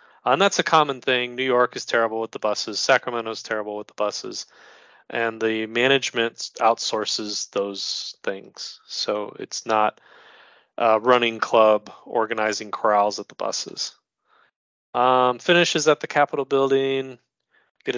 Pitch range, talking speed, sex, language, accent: 110-135 Hz, 140 wpm, male, English, American